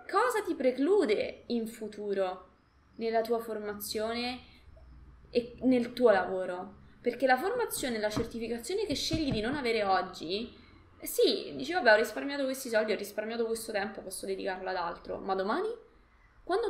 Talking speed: 150 wpm